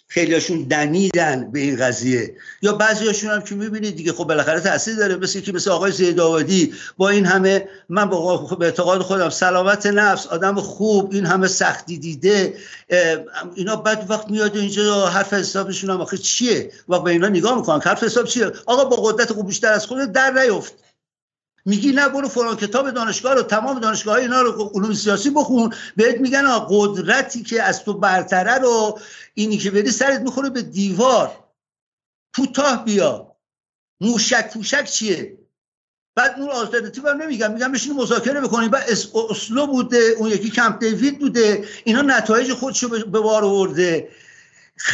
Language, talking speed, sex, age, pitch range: Persian, 160 wpm, male, 50-69, 190-235 Hz